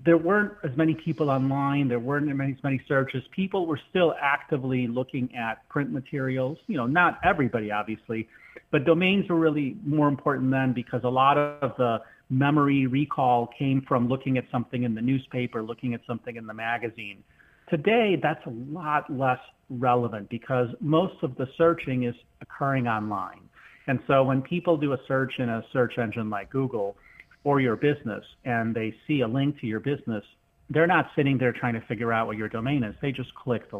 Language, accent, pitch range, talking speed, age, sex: English, American, 120-145 Hz, 190 wpm, 40-59, male